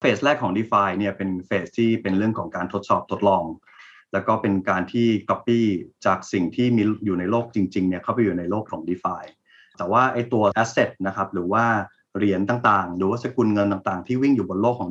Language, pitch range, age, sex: Thai, 95-115 Hz, 20-39, male